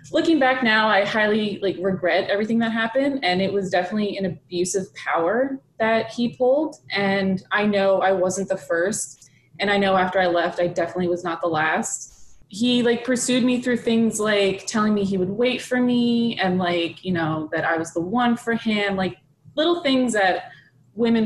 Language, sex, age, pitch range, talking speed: English, female, 20-39, 175-215 Hz, 195 wpm